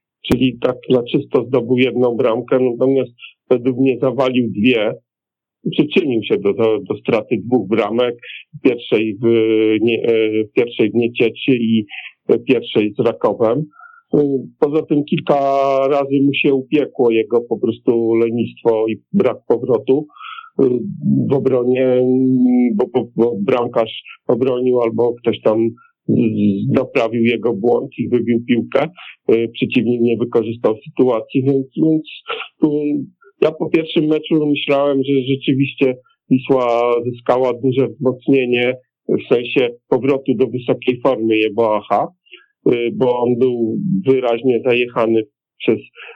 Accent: native